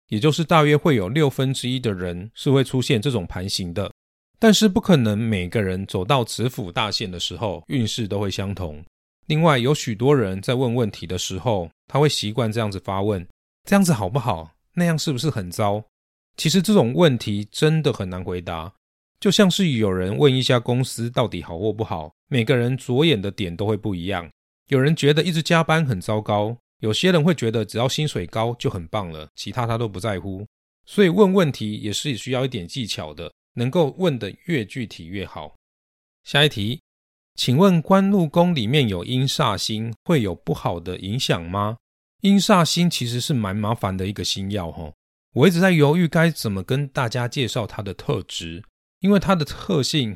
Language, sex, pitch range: Chinese, male, 95-145 Hz